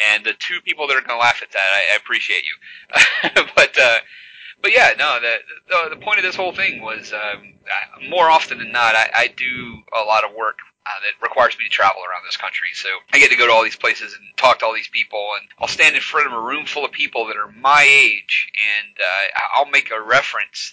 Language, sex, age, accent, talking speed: English, male, 30-49, American, 245 wpm